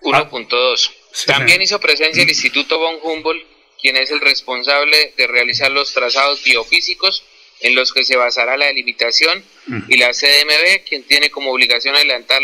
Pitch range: 130-155 Hz